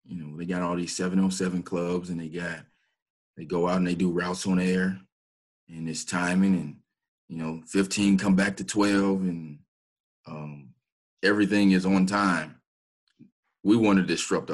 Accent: American